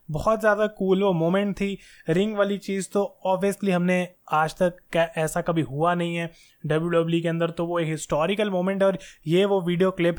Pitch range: 160-185 Hz